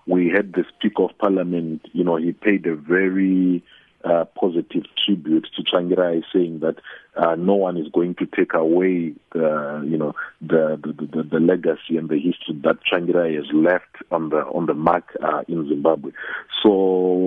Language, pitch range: English, 85-95 Hz